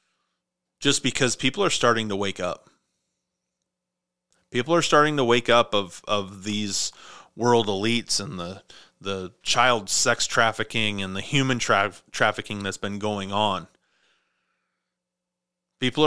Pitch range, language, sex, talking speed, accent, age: 105-125 Hz, English, male, 130 wpm, American, 30-49